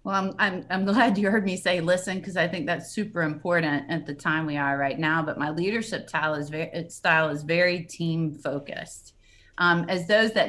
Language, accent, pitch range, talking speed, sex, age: English, American, 155-185 Hz, 215 wpm, female, 30-49